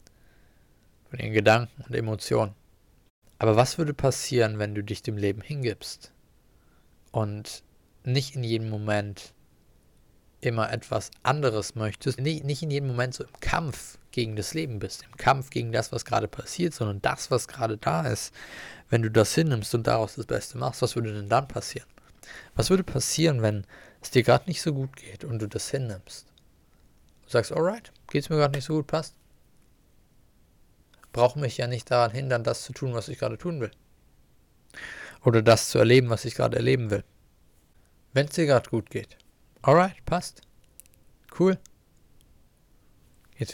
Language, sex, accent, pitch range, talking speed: German, male, German, 110-140 Hz, 165 wpm